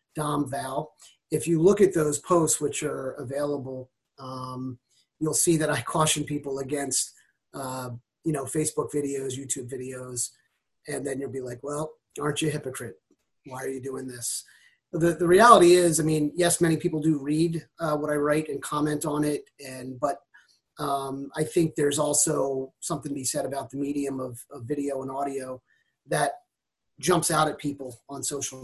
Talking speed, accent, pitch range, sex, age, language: 180 wpm, American, 135-155 Hz, male, 30-49, English